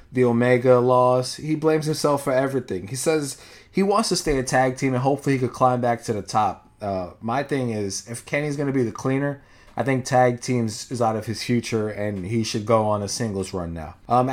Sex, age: male, 20-39